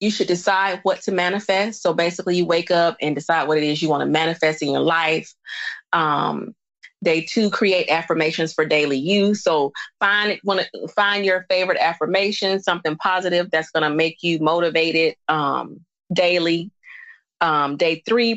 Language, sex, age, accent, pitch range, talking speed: English, female, 30-49, American, 160-205 Hz, 175 wpm